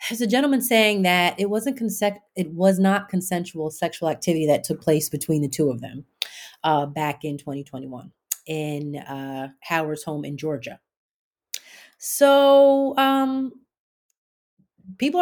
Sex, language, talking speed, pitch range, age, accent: female, English, 140 wpm, 160-235 Hz, 30-49, American